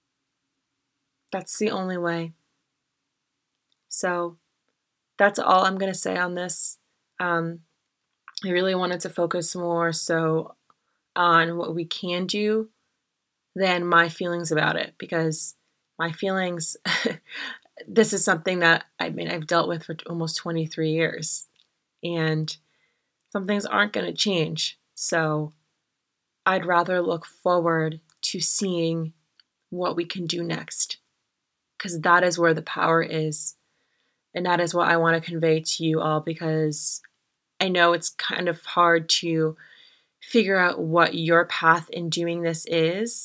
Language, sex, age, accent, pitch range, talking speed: English, female, 20-39, American, 160-180 Hz, 140 wpm